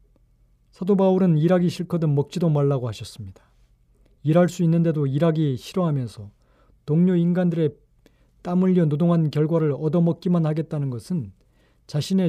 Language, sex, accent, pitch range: Korean, male, native, 140-170 Hz